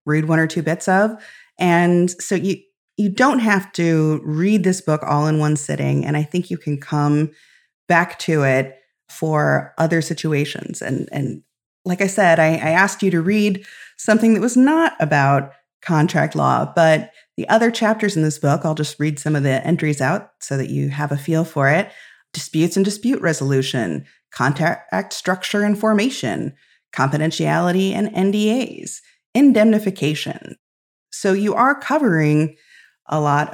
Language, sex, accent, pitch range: English, female, American, 150-205 Hz